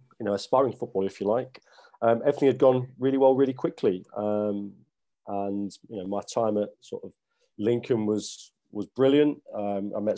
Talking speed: 185 wpm